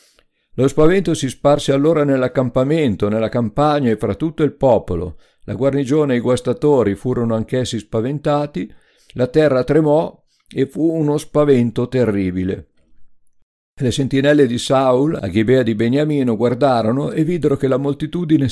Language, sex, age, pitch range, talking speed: Italian, male, 50-69, 110-145 Hz, 140 wpm